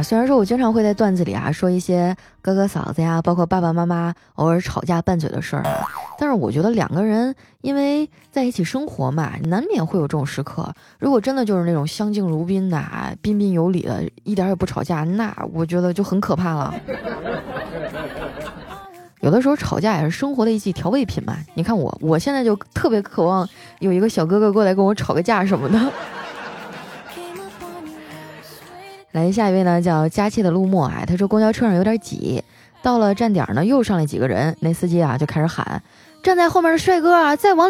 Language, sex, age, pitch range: Chinese, female, 20-39, 165-240 Hz